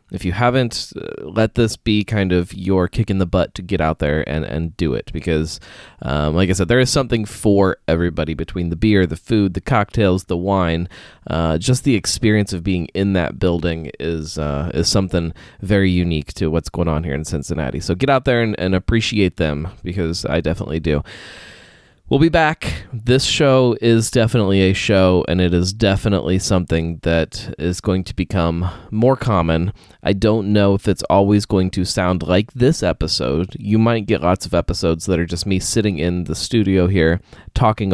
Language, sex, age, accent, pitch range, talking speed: English, male, 20-39, American, 85-110 Hz, 195 wpm